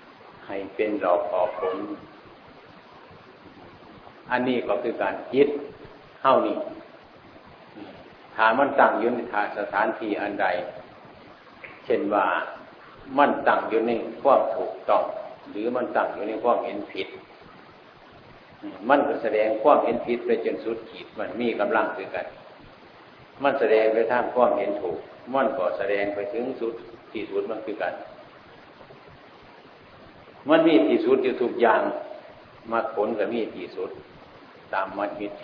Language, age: Thai, 60-79